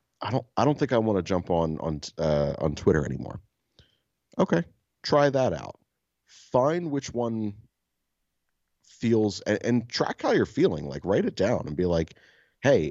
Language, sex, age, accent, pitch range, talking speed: English, male, 30-49, American, 75-105 Hz, 170 wpm